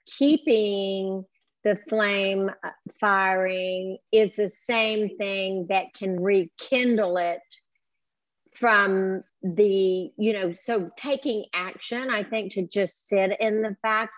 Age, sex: 50-69, female